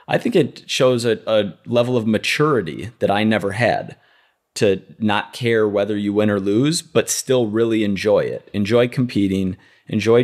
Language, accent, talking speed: English, American, 170 wpm